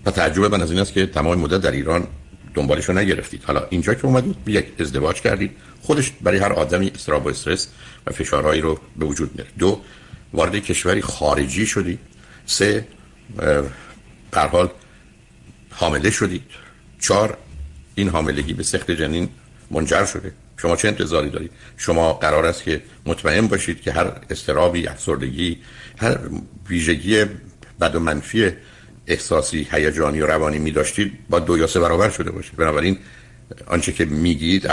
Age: 60-79